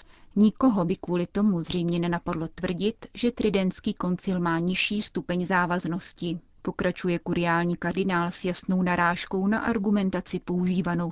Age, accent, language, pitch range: 30-49, native, Czech, 175-200 Hz